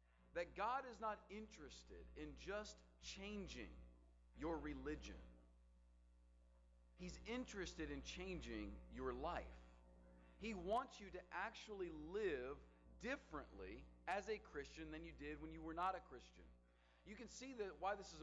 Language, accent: English, American